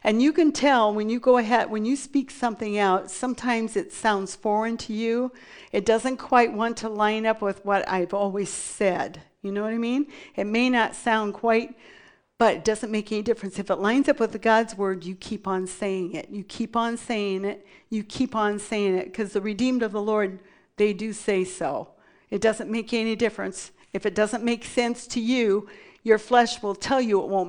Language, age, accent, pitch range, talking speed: English, 50-69, American, 200-235 Hz, 215 wpm